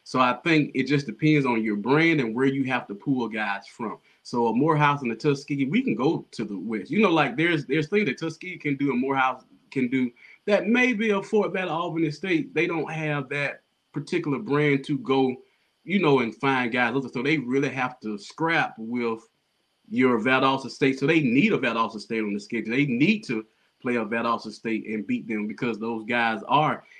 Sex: male